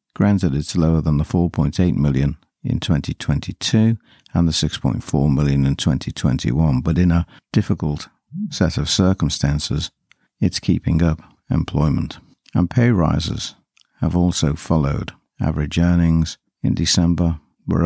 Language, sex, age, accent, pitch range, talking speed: English, male, 60-79, British, 75-90 Hz, 125 wpm